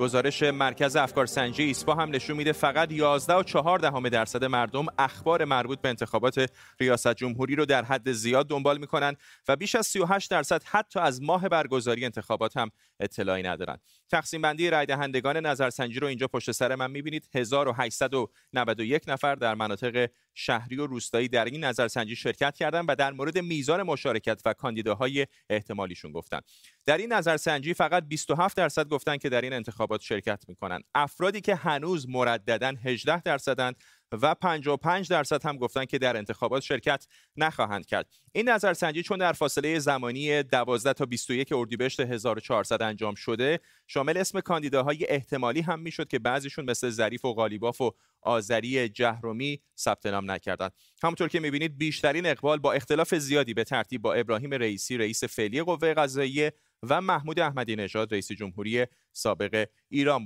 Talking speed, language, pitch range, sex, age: 155 wpm, Persian, 120-155 Hz, male, 30-49